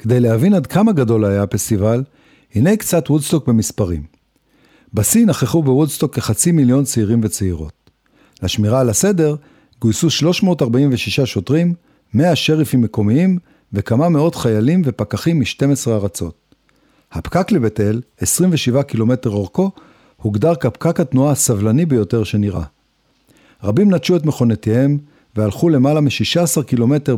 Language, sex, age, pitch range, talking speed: Hebrew, male, 50-69, 110-155 Hz, 115 wpm